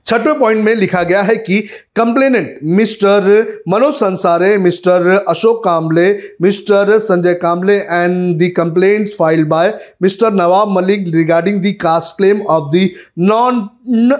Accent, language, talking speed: native, Hindi, 135 wpm